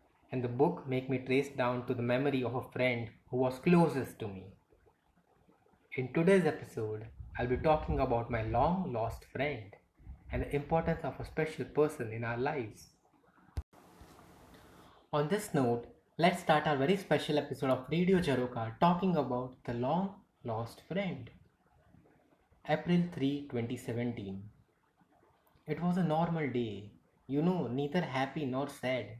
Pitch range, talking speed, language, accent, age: 125-155 Hz, 145 wpm, English, Indian, 20-39